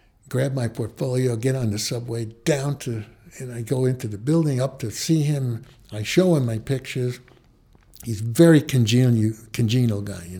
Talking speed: 175 wpm